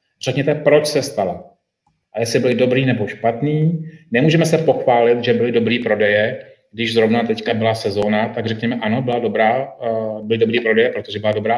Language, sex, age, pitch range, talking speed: Czech, male, 30-49, 115-145 Hz, 160 wpm